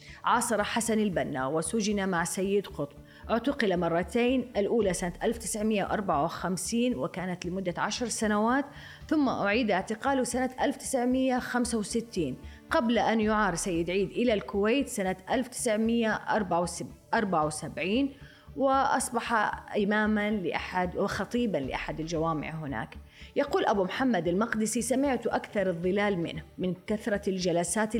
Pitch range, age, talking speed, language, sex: 175-230 Hz, 30-49, 105 wpm, Arabic, female